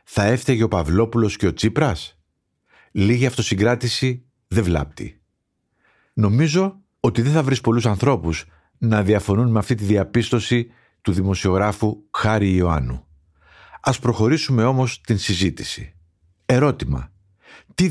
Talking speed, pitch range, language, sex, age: 115 wpm, 95-130 Hz, Greek, male, 50-69